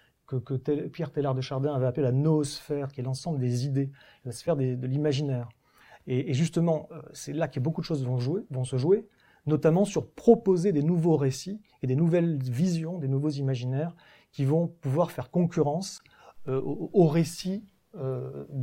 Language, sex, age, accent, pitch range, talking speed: French, male, 30-49, French, 135-170 Hz, 180 wpm